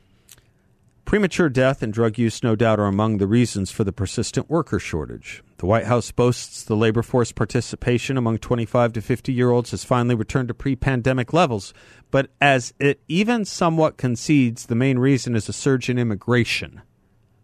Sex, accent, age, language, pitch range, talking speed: male, American, 50-69, English, 100-125 Hz, 170 wpm